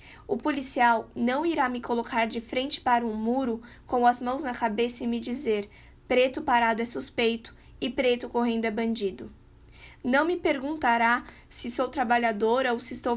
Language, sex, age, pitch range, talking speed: Portuguese, female, 20-39, 235-275 Hz, 170 wpm